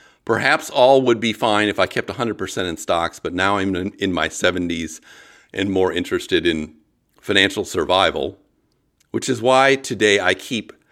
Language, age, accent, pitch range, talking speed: English, 50-69, American, 85-110 Hz, 160 wpm